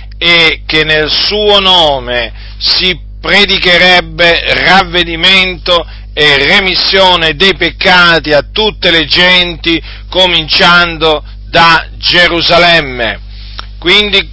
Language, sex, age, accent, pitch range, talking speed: Italian, male, 40-59, native, 140-195 Hz, 85 wpm